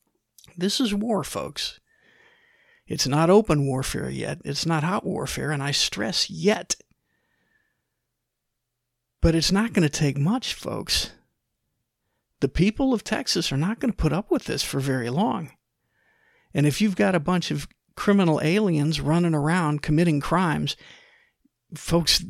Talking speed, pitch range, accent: 145 wpm, 145-185 Hz, American